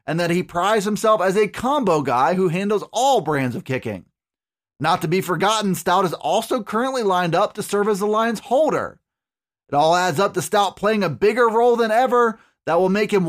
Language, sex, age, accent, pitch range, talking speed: English, male, 30-49, American, 180-220 Hz, 210 wpm